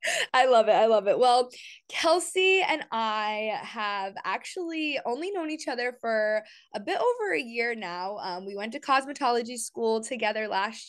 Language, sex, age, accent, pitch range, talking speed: English, female, 20-39, American, 205-270 Hz, 170 wpm